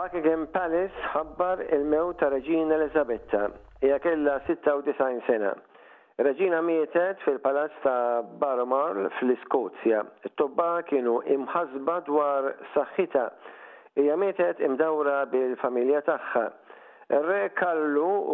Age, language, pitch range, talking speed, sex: 50-69, English, 135-170 Hz, 50 wpm, male